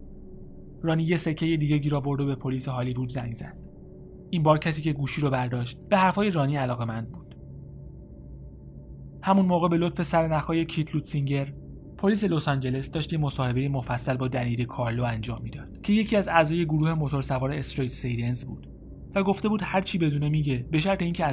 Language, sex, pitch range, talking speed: Persian, male, 120-155 Hz, 170 wpm